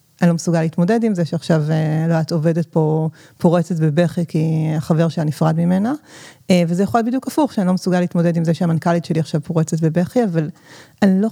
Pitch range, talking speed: 160-180 Hz, 195 wpm